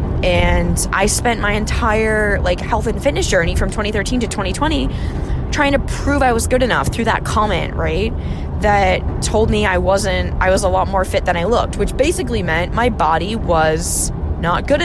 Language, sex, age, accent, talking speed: English, female, 20-39, American, 190 wpm